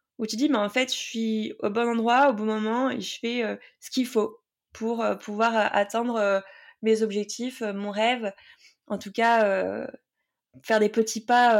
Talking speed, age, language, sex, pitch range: 200 wpm, 20-39, French, female, 200-235 Hz